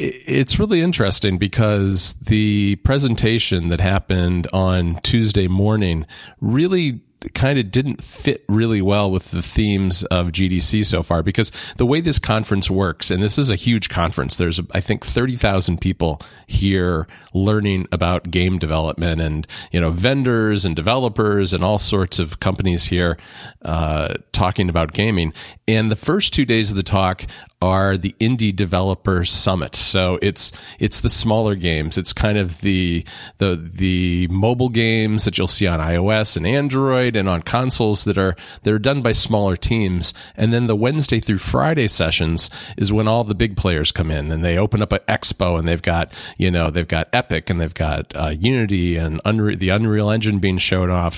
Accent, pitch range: American, 90-110 Hz